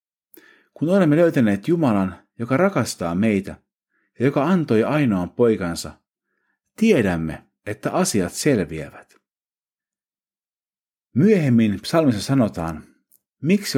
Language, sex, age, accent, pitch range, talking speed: Finnish, male, 50-69, native, 95-160 Hz, 85 wpm